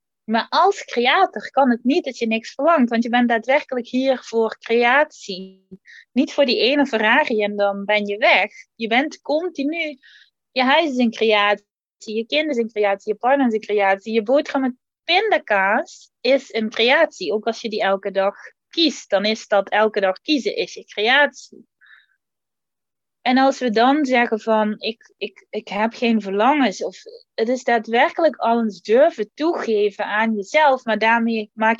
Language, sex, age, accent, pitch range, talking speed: Dutch, female, 20-39, Dutch, 205-275 Hz, 175 wpm